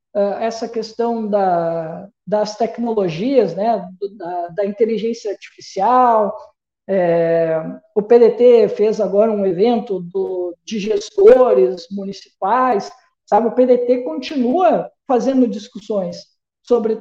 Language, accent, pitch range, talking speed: Portuguese, Brazilian, 195-255 Hz, 100 wpm